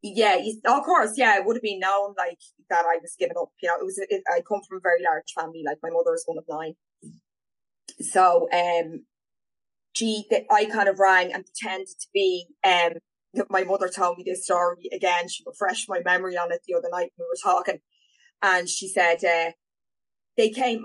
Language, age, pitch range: English, 20-39, 170-250 Hz